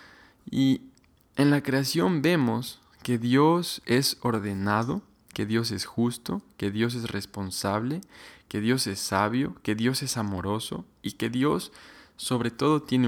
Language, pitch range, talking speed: Spanish, 105-130 Hz, 140 wpm